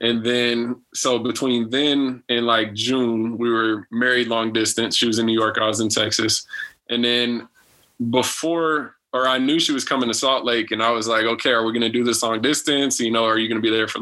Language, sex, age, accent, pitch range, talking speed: English, male, 20-39, American, 115-130 Hz, 245 wpm